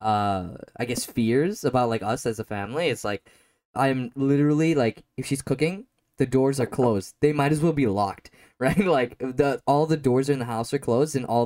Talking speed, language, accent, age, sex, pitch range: 215 wpm, English, American, 10-29, male, 115-165 Hz